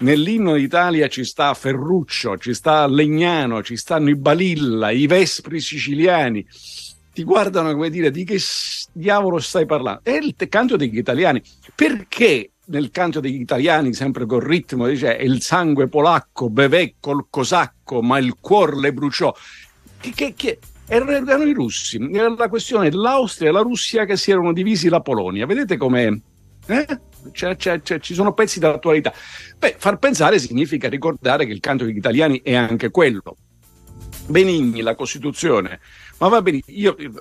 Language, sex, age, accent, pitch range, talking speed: Italian, male, 50-69, native, 130-175 Hz, 155 wpm